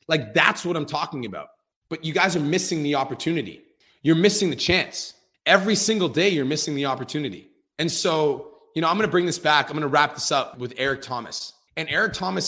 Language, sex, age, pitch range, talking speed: English, male, 30-49, 130-175 Hz, 220 wpm